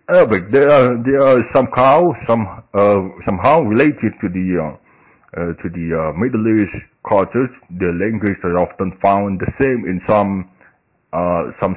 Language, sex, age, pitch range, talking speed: Indonesian, male, 60-79, 100-130 Hz, 160 wpm